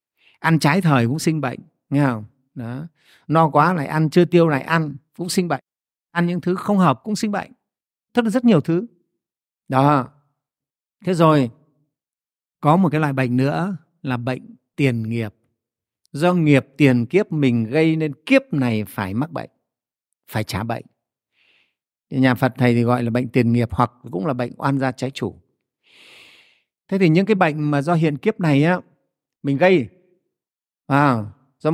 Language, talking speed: Vietnamese, 175 wpm